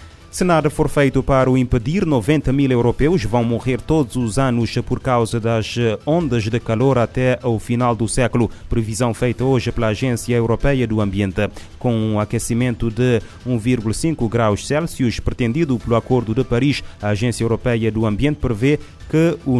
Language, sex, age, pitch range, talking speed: Portuguese, male, 30-49, 110-130 Hz, 170 wpm